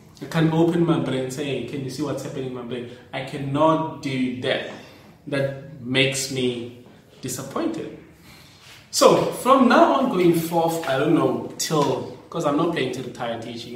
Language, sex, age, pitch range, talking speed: English, male, 20-39, 135-165 Hz, 170 wpm